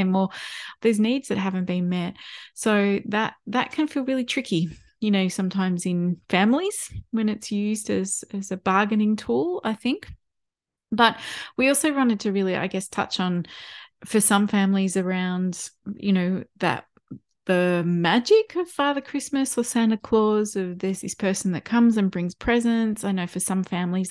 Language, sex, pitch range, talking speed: English, female, 175-225 Hz, 170 wpm